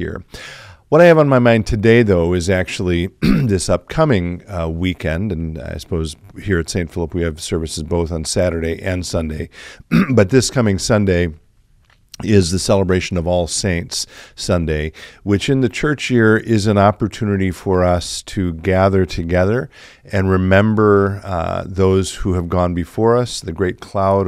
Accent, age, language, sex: American, 50-69, English, male